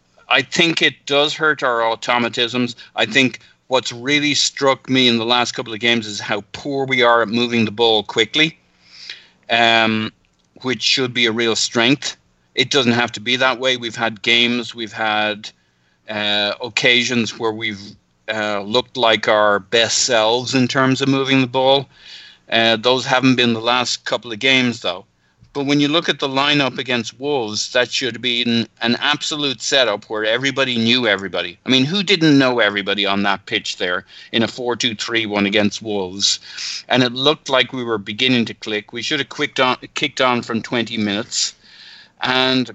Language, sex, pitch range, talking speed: English, male, 110-130 Hz, 185 wpm